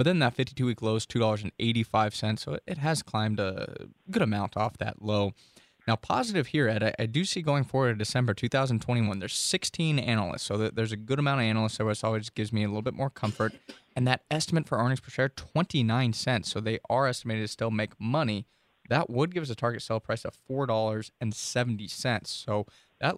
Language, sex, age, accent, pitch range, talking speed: English, male, 20-39, American, 110-125 Hz, 200 wpm